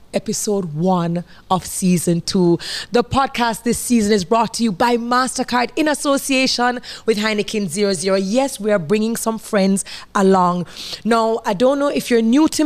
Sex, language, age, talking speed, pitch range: female, English, 20-39, 170 wpm, 190-240 Hz